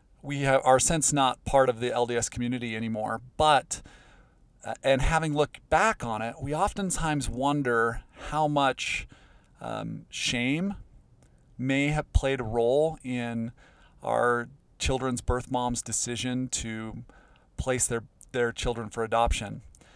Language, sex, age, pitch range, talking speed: English, male, 40-59, 115-130 Hz, 130 wpm